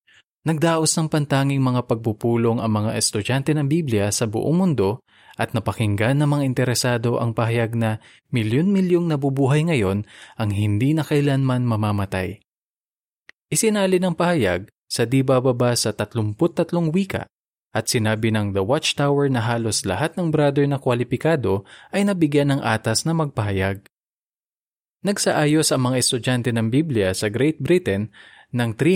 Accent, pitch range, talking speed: native, 110-150 Hz, 135 wpm